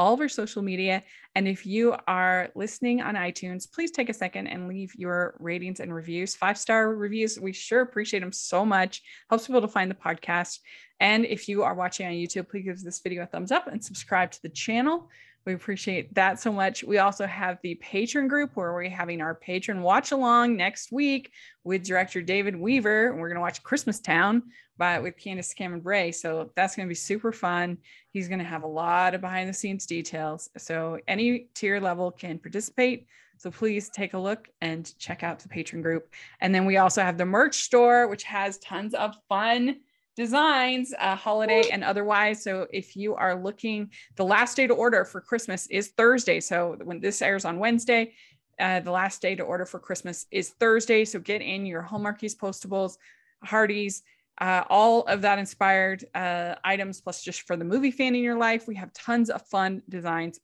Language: English